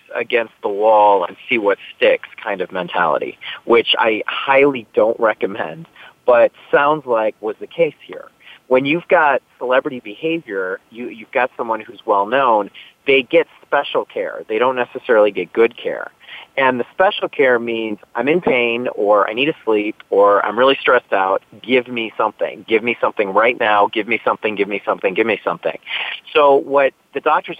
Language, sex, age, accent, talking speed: English, male, 30-49, American, 180 wpm